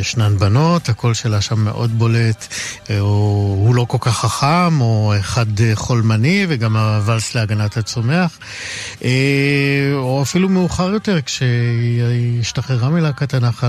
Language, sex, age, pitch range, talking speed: Hebrew, male, 50-69, 105-130 Hz, 125 wpm